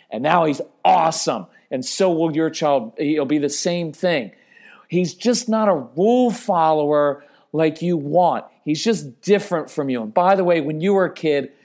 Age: 40-59